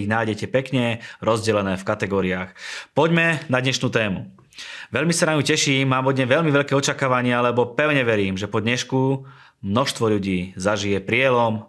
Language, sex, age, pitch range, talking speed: Slovak, male, 20-39, 105-130 Hz, 150 wpm